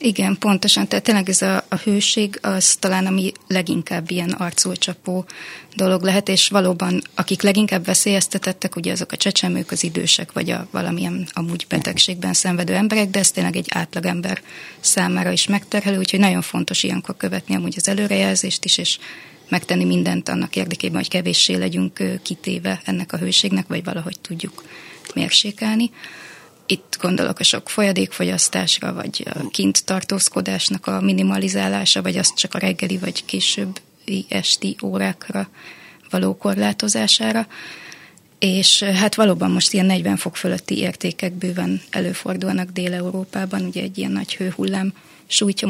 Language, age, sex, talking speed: Hungarian, 20-39, female, 140 wpm